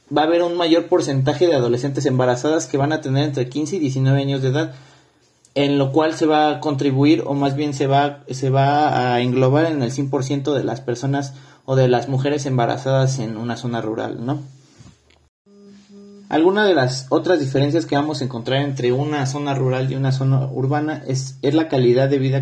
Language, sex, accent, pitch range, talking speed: Spanish, male, Mexican, 130-155 Hz, 200 wpm